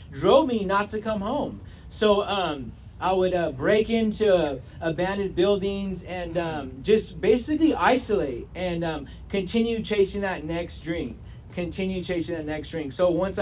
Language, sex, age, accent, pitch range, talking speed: English, male, 30-49, American, 155-205 Hz, 155 wpm